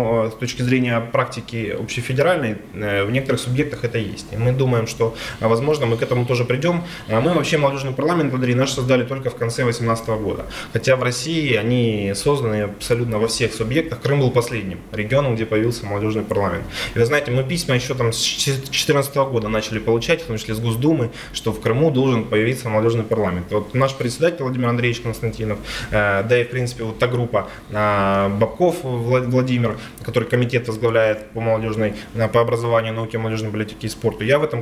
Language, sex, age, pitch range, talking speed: Russian, male, 20-39, 115-140 Hz, 175 wpm